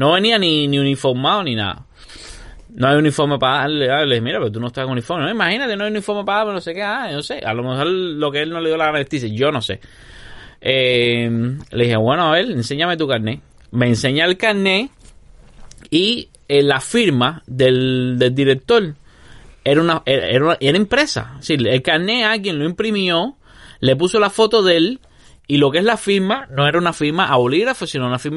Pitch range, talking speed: 120-170 Hz, 215 wpm